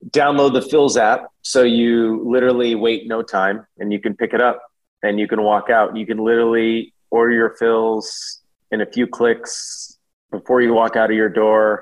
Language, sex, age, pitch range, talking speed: English, male, 30-49, 105-120 Hz, 195 wpm